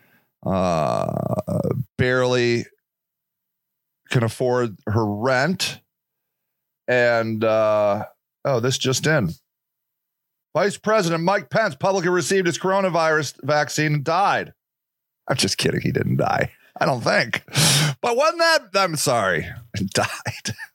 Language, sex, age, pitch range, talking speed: English, male, 30-49, 110-160 Hz, 115 wpm